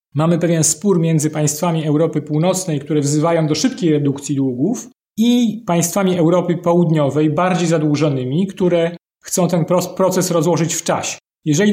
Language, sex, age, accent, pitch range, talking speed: Polish, male, 30-49, native, 155-195 Hz, 140 wpm